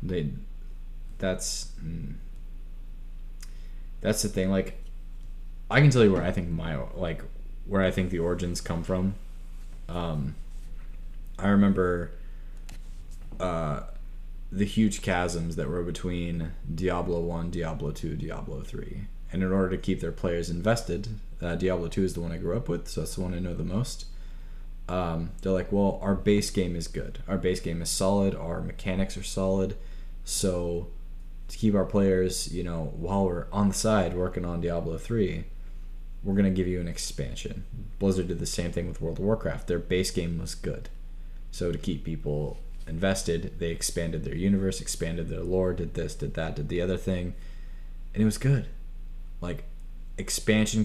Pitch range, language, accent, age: 85-95 Hz, English, American, 20-39